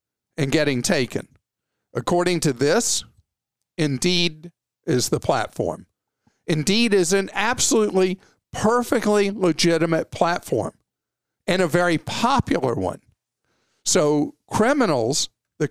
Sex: male